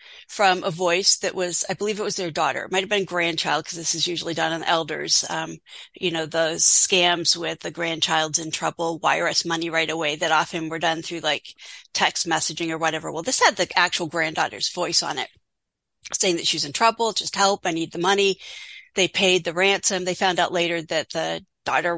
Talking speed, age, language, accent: 215 wpm, 40-59, English, American